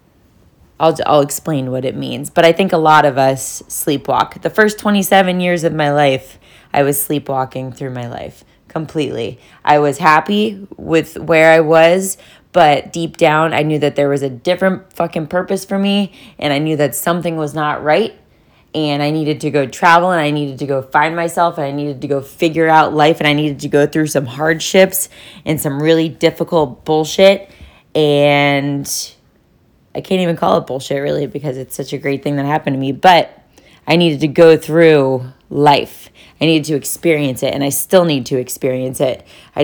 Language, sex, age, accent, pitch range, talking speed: English, female, 20-39, American, 140-165 Hz, 195 wpm